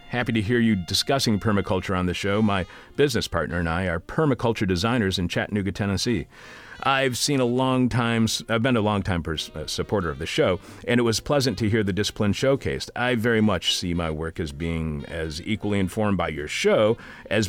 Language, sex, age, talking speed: English, male, 40-59, 200 wpm